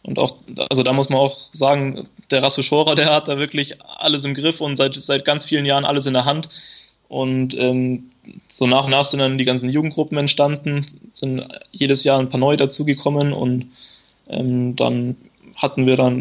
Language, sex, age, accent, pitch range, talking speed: German, male, 20-39, German, 135-150 Hz, 195 wpm